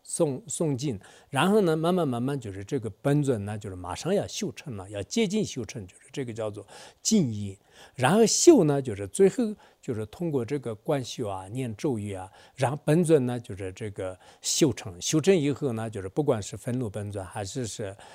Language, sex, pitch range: English, male, 100-150 Hz